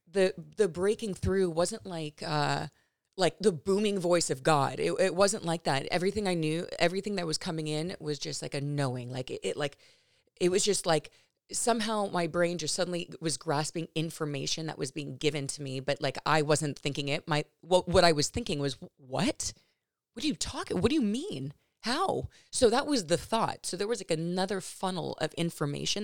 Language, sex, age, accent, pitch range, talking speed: English, female, 30-49, American, 155-205 Hz, 205 wpm